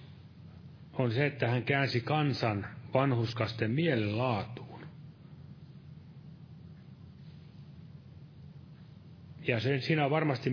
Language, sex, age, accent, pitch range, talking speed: Finnish, male, 30-49, native, 120-145 Hz, 75 wpm